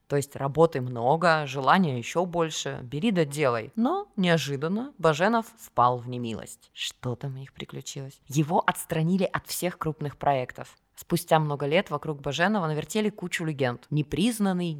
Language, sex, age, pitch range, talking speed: Russian, female, 20-39, 135-175 Hz, 150 wpm